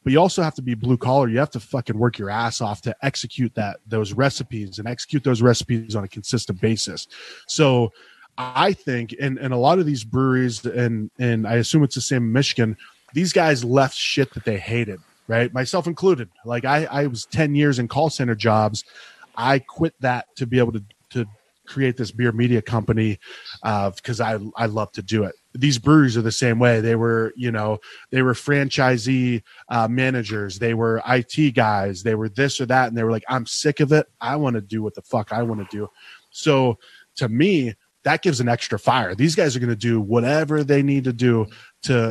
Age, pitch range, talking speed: 20-39, 115-135 Hz, 215 wpm